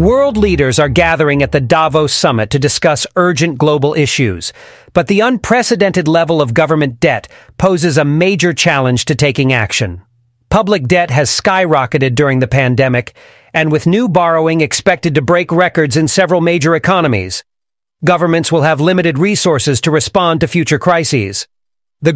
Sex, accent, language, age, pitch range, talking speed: male, American, English, 40-59, 145-180 Hz, 155 wpm